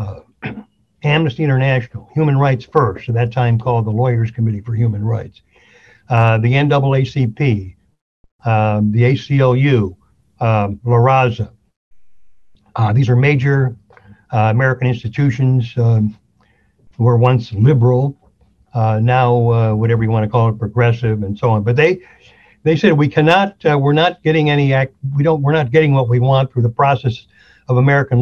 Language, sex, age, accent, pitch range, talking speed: Hebrew, male, 60-79, American, 110-135 Hz, 160 wpm